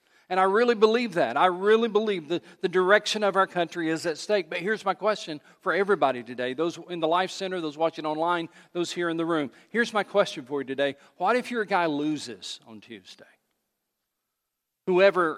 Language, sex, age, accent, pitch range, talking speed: English, male, 50-69, American, 145-190 Hz, 200 wpm